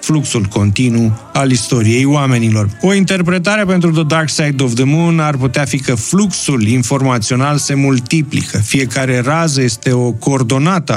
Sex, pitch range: male, 115-155 Hz